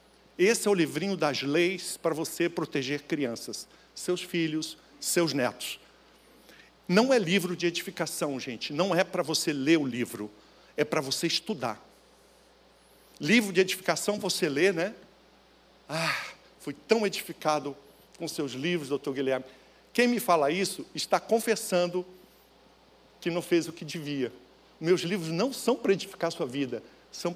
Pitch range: 155-195 Hz